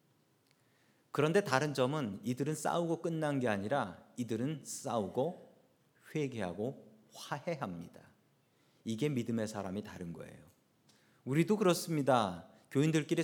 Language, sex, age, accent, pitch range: Korean, male, 40-59, native, 120-170 Hz